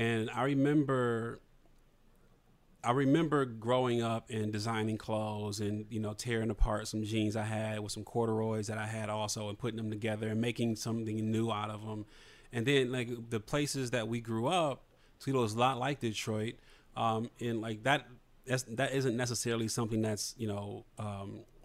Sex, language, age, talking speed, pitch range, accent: male, English, 30-49, 175 wpm, 110-125 Hz, American